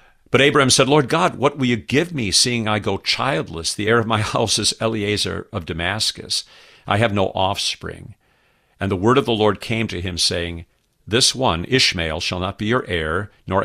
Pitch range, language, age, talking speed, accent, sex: 90-115 Hz, English, 50-69, 200 wpm, American, male